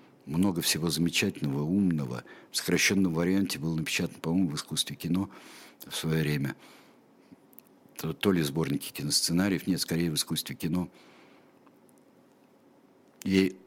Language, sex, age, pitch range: Russian, male, 60-79, 75-100 Hz